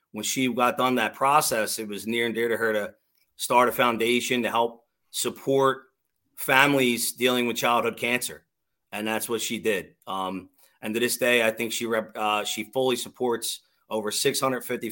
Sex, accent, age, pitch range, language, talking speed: male, American, 30-49, 110-125 Hz, English, 175 wpm